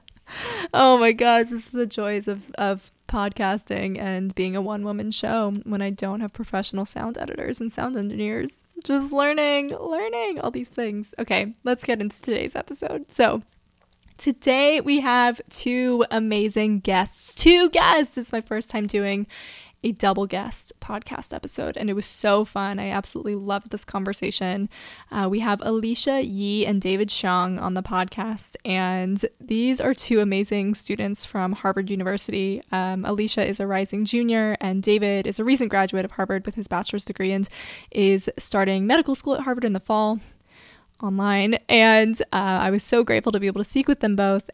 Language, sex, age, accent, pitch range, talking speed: English, female, 20-39, American, 195-230 Hz, 170 wpm